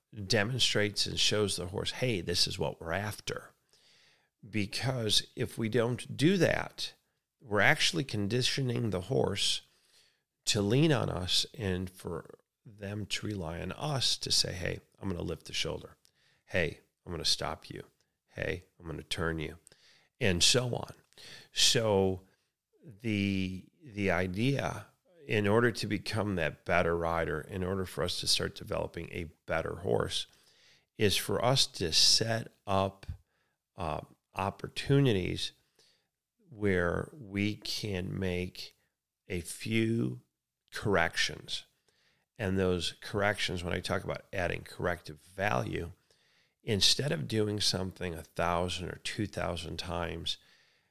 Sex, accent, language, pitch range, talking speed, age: male, American, English, 90-110 Hz, 130 wpm, 40-59